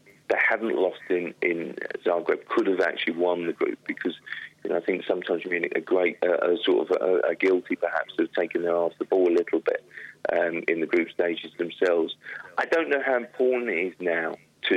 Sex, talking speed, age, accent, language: male, 220 wpm, 40-59, British, English